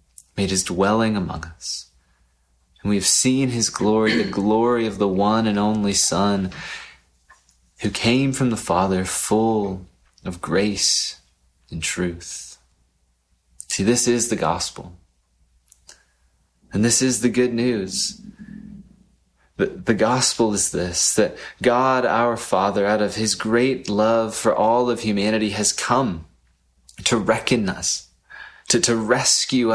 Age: 30-49